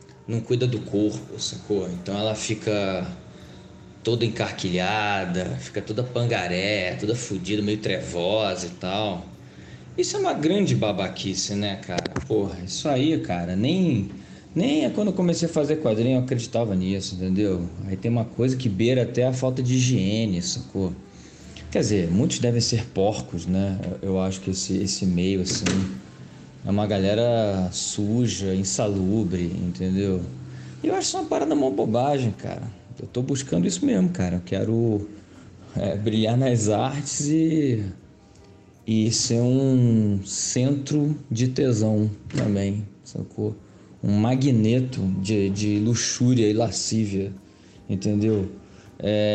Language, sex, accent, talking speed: Portuguese, male, Brazilian, 135 wpm